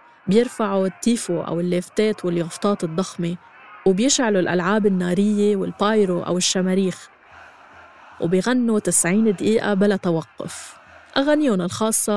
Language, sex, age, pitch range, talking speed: Arabic, female, 20-39, 180-220 Hz, 95 wpm